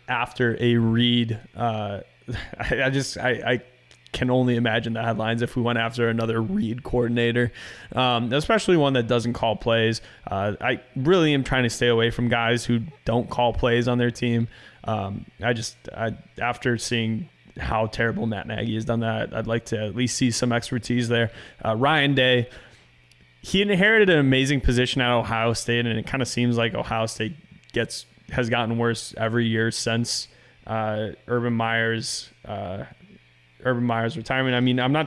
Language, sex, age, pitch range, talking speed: English, male, 20-39, 115-125 Hz, 180 wpm